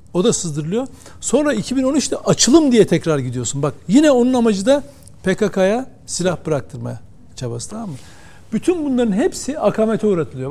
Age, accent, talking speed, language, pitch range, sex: 60-79, native, 145 wpm, Turkish, 160-230 Hz, male